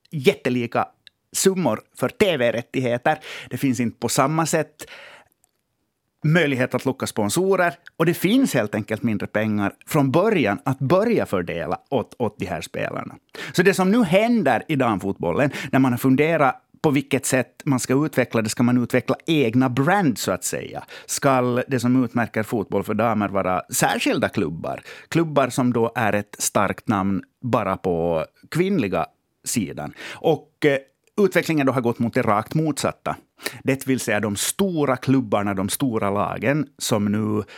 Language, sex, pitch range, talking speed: Swedish, male, 115-145 Hz, 160 wpm